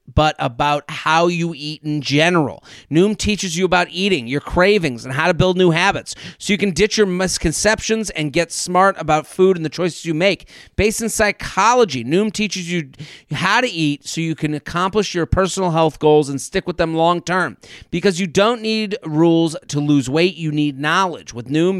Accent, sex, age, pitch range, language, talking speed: American, male, 40-59, 155-195 Hz, English, 200 wpm